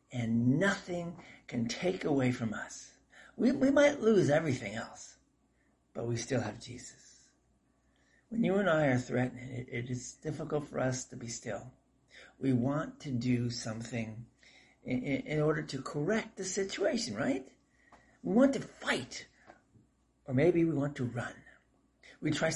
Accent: American